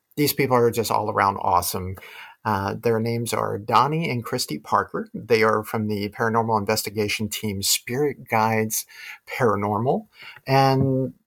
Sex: male